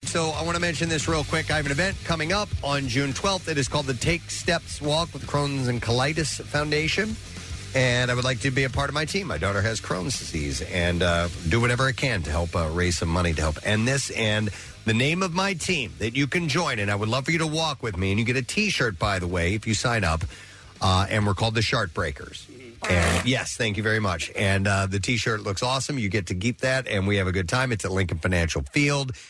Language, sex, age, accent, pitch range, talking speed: English, male, 40-59, American, 100-145 Hz, 260 wpm